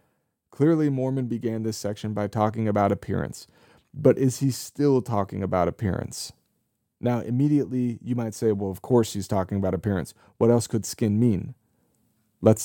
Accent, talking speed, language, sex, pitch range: American, 160 wpm, English, male, 100-120 Hz